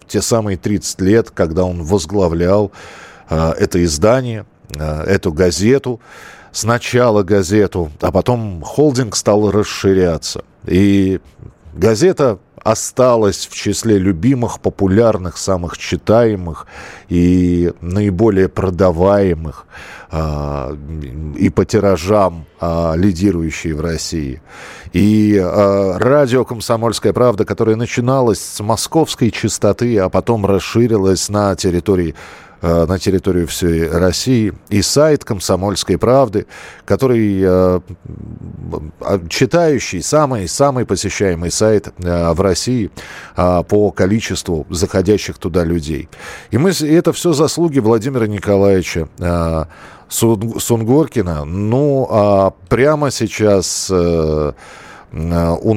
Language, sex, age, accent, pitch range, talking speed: Russian, male, 50-69, native, 85-115 Hz, 95 wpm